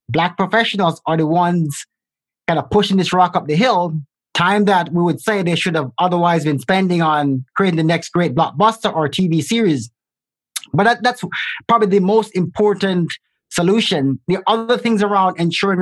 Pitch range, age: 165-205 Hz, 30-49